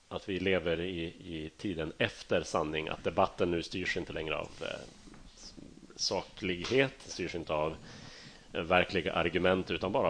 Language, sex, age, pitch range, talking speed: Swedish, male, 30-49, 80-95 Hz, 145 wpm